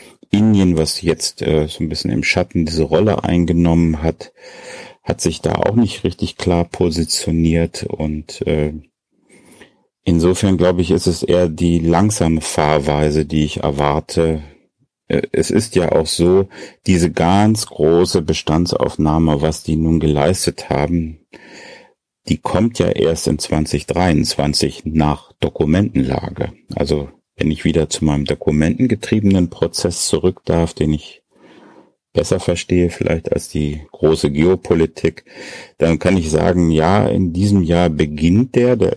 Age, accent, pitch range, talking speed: 40-59, German, 75-90 Hz, 135 wpm